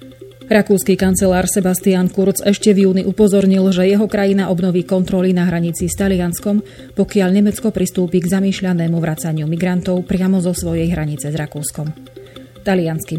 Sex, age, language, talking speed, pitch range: female, 30-49, Slovak, 140 wpm, 170-195 Hz